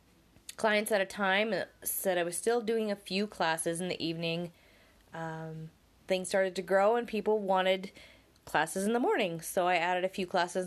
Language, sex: English, female